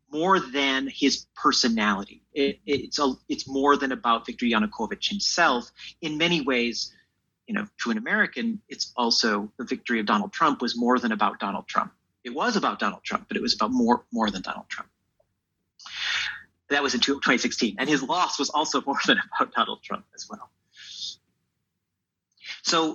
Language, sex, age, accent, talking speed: English, male, 40-59, American, 175 wpm